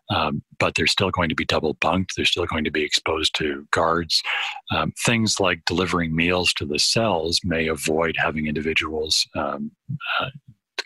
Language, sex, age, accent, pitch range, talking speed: English, male, 40-59, American, 80-100 Hz, 170 wpm